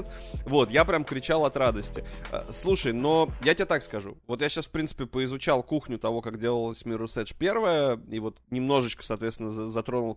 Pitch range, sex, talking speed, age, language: 110-140 Hz, male, 170 wpm, 20-39, Russian